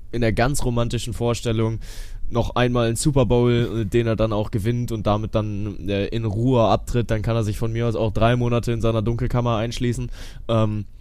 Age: 10-29